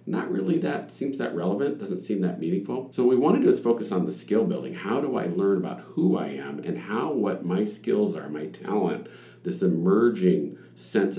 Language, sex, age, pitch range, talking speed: English, male, 50-69, 75-115 Hz, 215 wpm